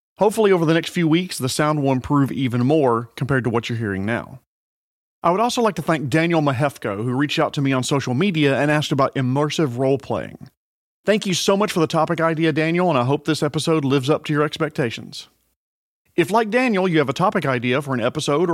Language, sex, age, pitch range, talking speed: English, male, 40-59, 135-170 Hz, 225 wpm